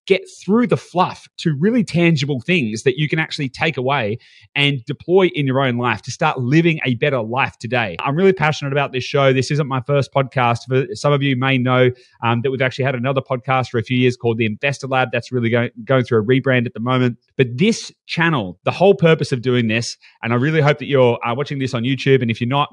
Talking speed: 245 wpm